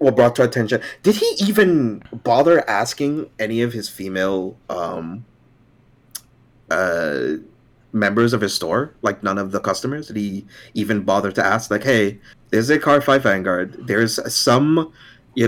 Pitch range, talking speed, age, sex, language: 100-120 Hz, 150 wpm, 30-49, male, English